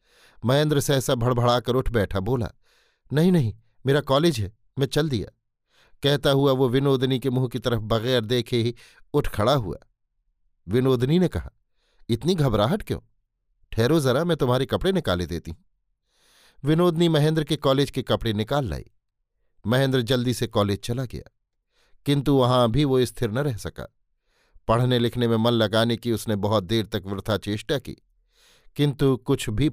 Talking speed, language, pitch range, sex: 160 wpm, Hindi, 110-130 Hz, male